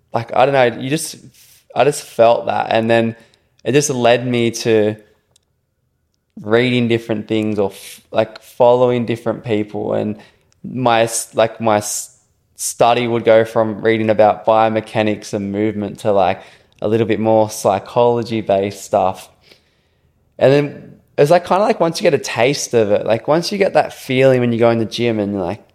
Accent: Australian